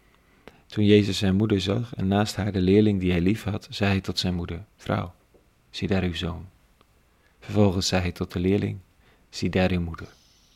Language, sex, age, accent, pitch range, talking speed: Dutch, male, 40-59, Dutch, 90-105 Hz, 195 wpm